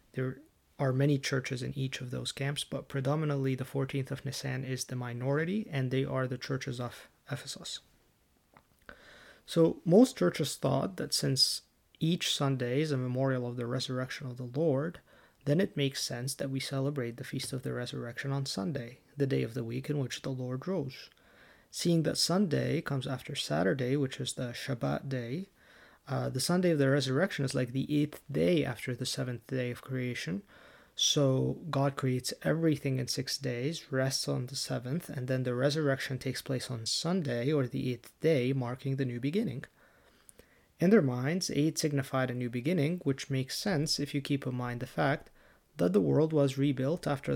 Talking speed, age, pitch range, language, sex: 185 wpm, 30-49, 130-145 Hz, English, male